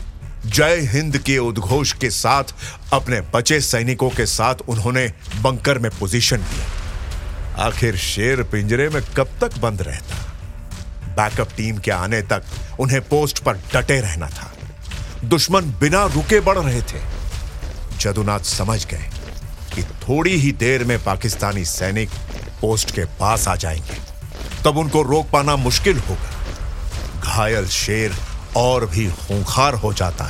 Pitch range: 90-140 Hz